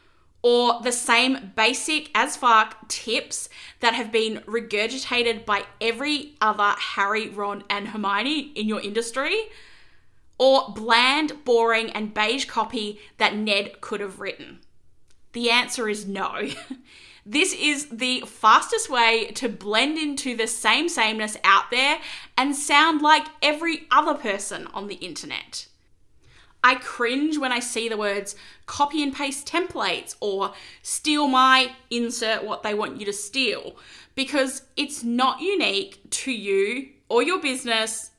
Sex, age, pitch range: female, 10-29, 220-285 Hz